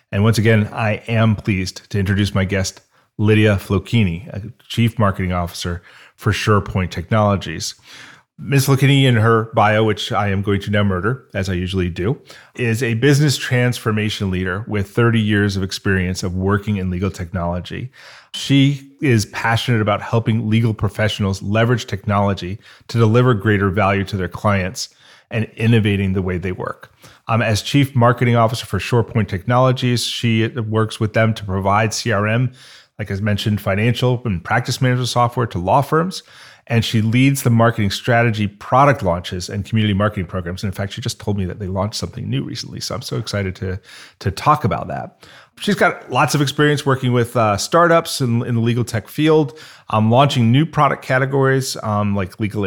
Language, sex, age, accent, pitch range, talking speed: English, male, 30-49, American, 100-120 Hz, 175 wpm